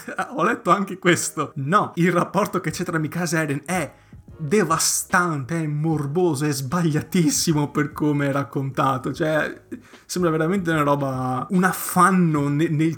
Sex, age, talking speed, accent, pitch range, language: male, 20-39, 145 wpm, native, 140-175 Hz, Italian